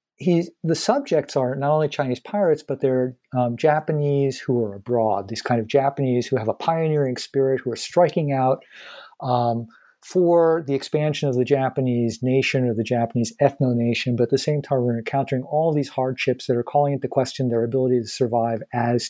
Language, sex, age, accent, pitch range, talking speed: English, male, 50-69, American, 120-140 Hz, 185 wpm